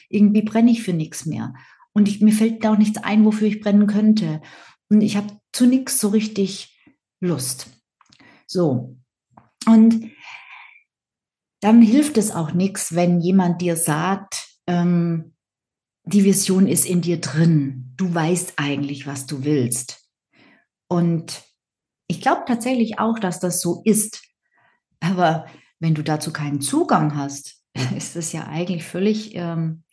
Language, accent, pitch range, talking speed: German, German, 165-215 Hz, 140 wpm